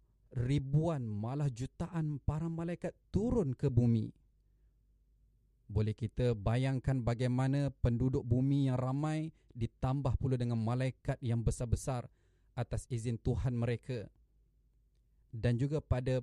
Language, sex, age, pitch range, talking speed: Malay, male, 30-49, 110-140 Hz, 105 wpm